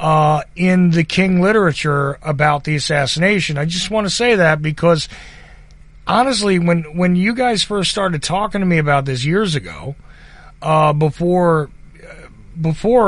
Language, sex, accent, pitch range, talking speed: English, male, American, 150-175 Hz, 140 wpm